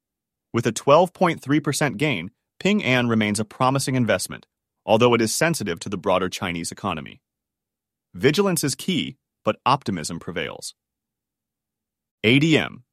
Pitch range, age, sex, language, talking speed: 110-155 Hz, 30-49, male, English, 120 wpm